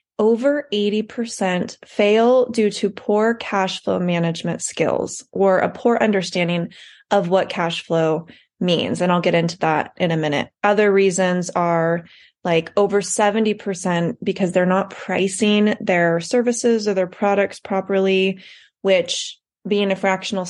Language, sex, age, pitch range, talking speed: English, female, 20-39, 180-220 Hz, 140 wpm